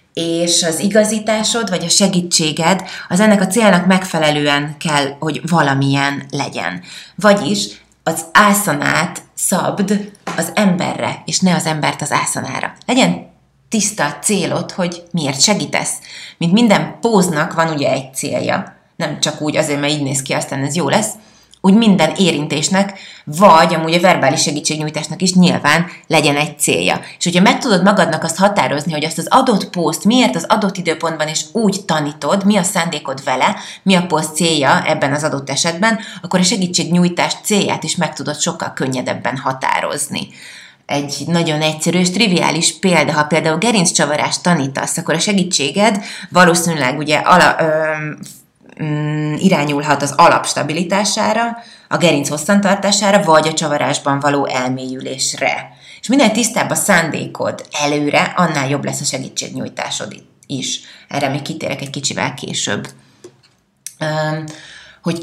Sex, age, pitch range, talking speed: female, 30-49, 150-195 Hz, 140 wpm